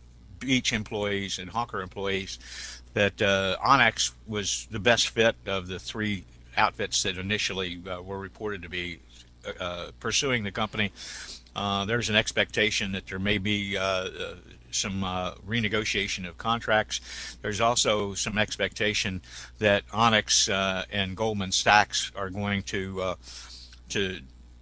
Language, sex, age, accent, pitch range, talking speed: English, male, 60-79, American, 90-110 Hz, 135 wpm